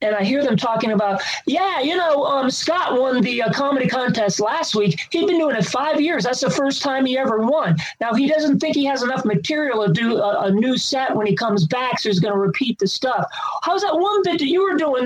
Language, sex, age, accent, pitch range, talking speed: English, male, 40-59, American, 205-290 Hz, 255 wpm